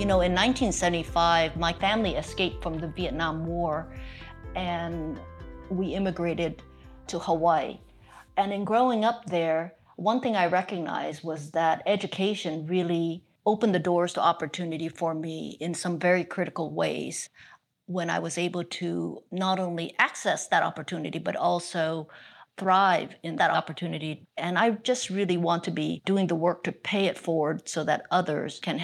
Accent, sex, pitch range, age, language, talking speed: American, female, 160-185 Hz, 50-69, English, 155 wpm